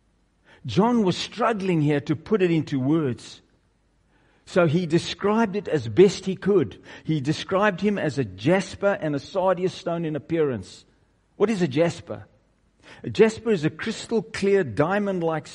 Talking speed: 155 wpm